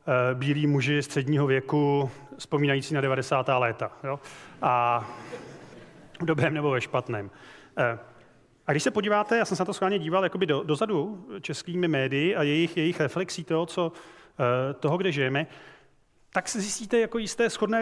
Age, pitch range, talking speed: 30-49, 135-170 Hz, 150 wpm